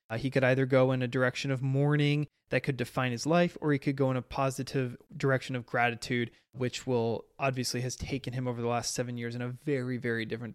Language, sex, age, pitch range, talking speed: English, male, 20-39, 125-145 Hz, 235 wpm